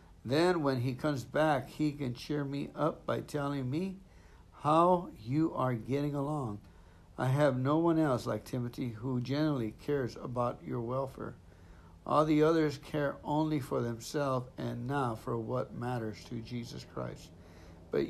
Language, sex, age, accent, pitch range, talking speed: English, male, 60-79, American, 120-150 Hz, 155 wpm